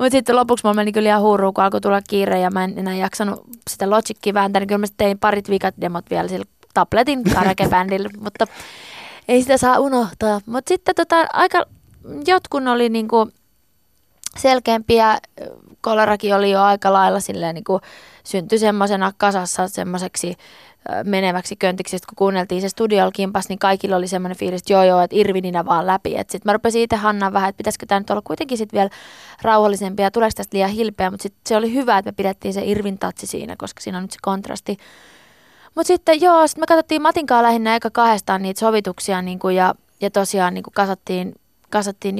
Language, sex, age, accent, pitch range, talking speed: Finnish, female, 20-39, native, 190-225 Hz, 180 wpm